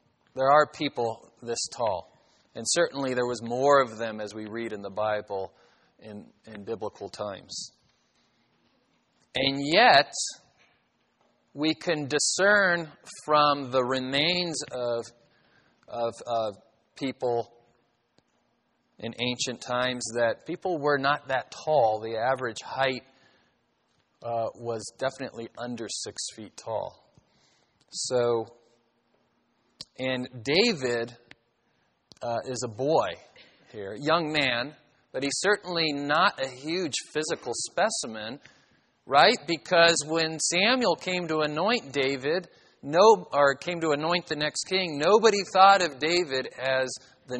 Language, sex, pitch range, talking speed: English, male, 120-150 Hz, 120 wpm